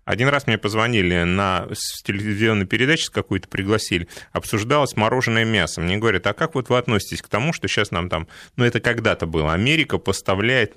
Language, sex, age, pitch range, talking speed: Russian, male, 30-49, 100-125 Hz, 175 wpm